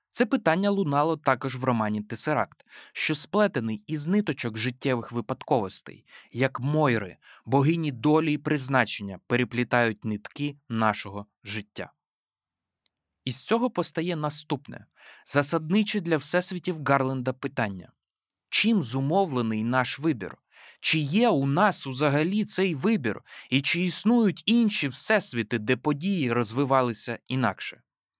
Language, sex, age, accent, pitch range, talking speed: Ukrainian, male, 20-39, native, 120-165 Hz, 110 wpm